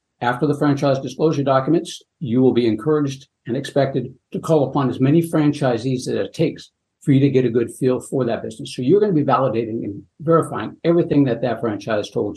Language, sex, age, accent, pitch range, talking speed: English, male, 60-79, American, 115-155 Hz, 210 wpm